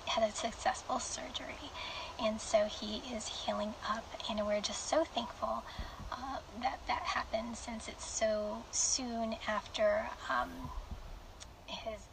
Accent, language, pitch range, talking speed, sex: American, English, 225-325 Hz, 130 wpm, female